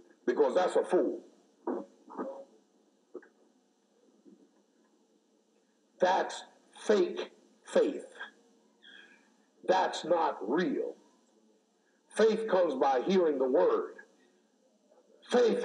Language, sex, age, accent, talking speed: English, male, 60-79, American, 65 wpm